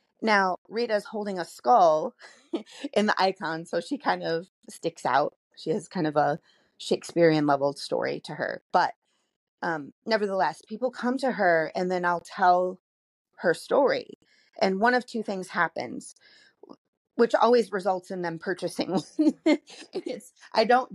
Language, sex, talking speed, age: English, female, 145 wpm, 30-49